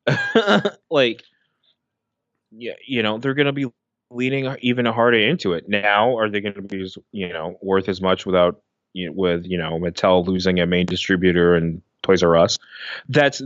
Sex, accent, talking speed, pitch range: male, American, 170 wpm, 90-115 Hz